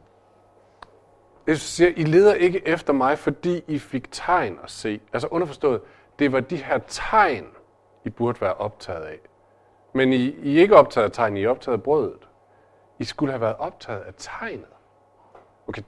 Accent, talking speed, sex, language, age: native, 175 wpm, male, Danish, 40-59